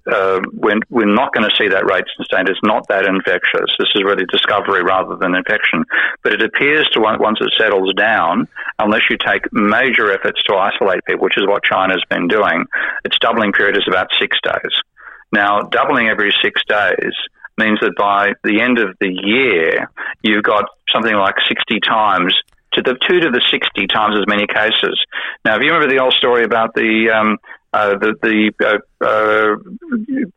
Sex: male